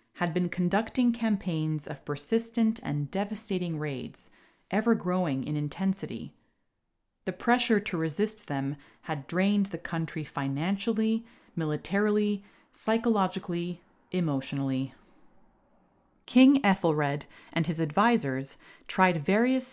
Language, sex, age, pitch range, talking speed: English, female, 30-49, 150-200 Hz, 95 wpm